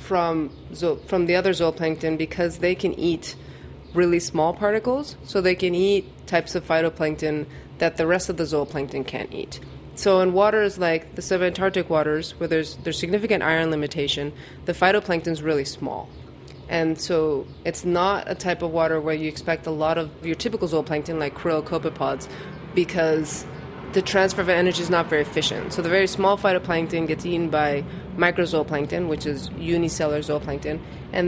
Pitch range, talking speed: 155-180 Hz, 165 wpm